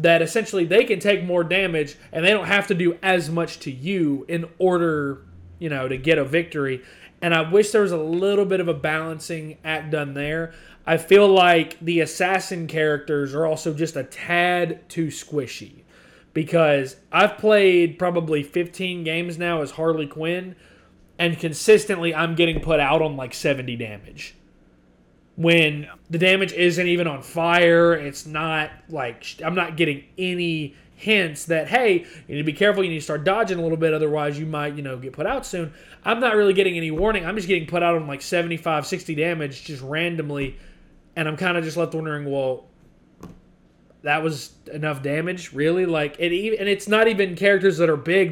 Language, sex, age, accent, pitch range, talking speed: English, male, 30-49, American, 145-180 Hz, 190 wpm